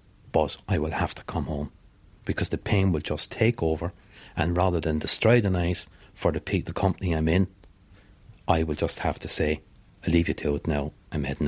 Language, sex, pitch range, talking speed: English, male, 80-100 Hz, 215 wpm